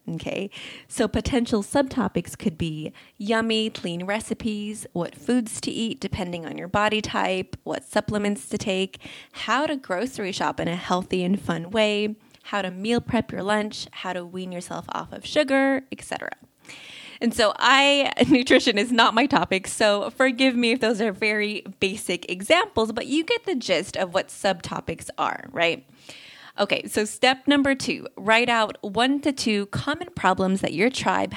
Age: 20-39